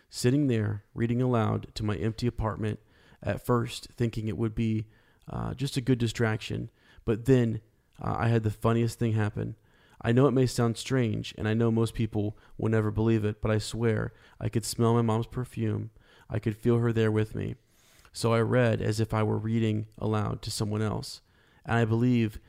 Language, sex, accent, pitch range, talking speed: English, male, American, 110-120 Hz, 195 wpm